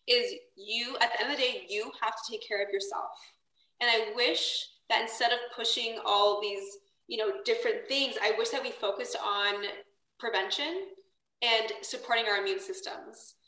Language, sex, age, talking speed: English, female, 20-39, 180 wpm